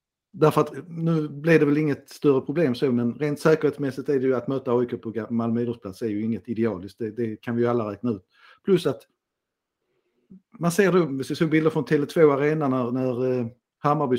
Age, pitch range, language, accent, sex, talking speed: 50-69, 115-140 Hz, Swedish, native, male, 190 wpm